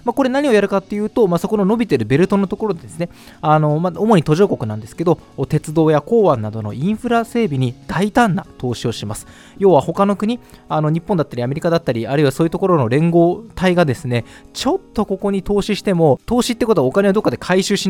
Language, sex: Japanese, male